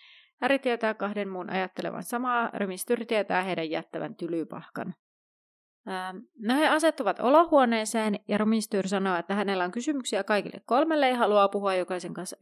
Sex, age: female, 30-49